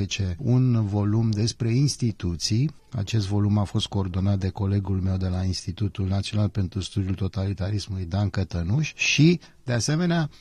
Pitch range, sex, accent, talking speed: 100-125 Hz, male, native, 140 wpm